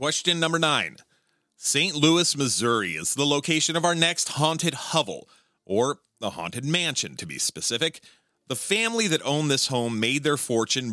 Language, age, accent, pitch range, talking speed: English, 30-49, American, 110-155 Hz, 165 wpm